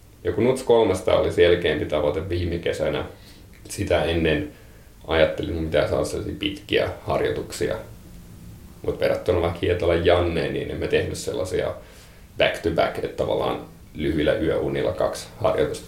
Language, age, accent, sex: Finnish, 30-49, native, male